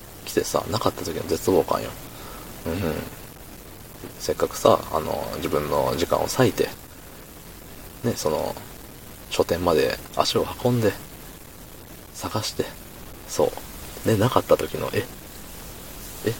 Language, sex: Japanese, male